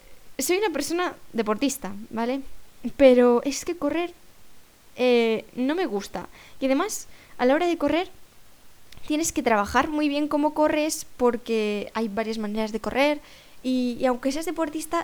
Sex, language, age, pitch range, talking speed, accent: female, Spanish, 20-39, 235-300 Hz, 150 wpm, Spanish